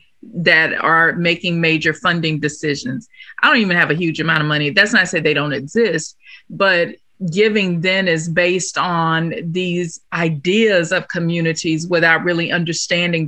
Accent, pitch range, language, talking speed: American, 160-190 Hz, English, 160 wpm